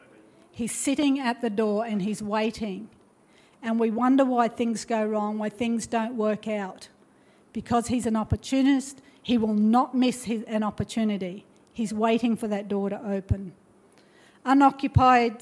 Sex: female